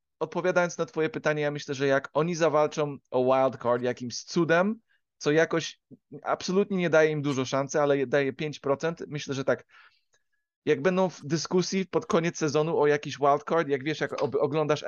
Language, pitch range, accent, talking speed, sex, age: Polish, 130-160 Hz, native, 170 wpm, male, 30-49